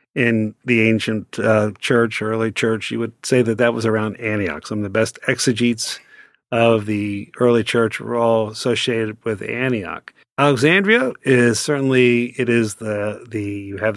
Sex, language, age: male, English, 50-69